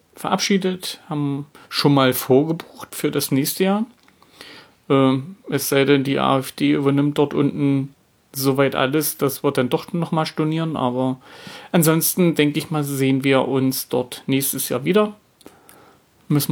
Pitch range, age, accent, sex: 135-160 Hz, 30-49, German, male